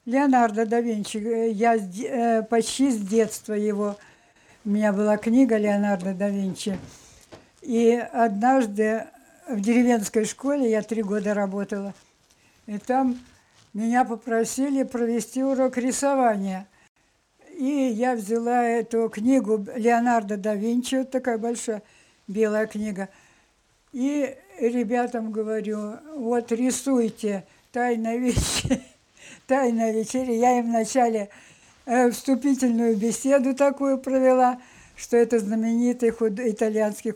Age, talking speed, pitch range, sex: 60-79, 105 wpm, 220-260 Hz, female